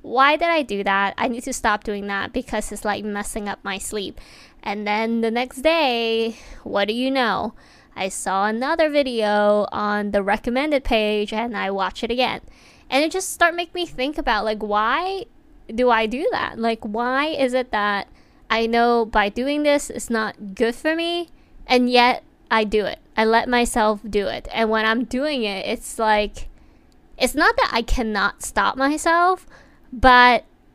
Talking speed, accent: 185 wpm, American